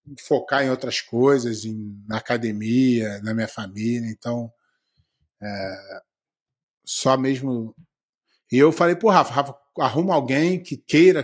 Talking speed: 130 wpm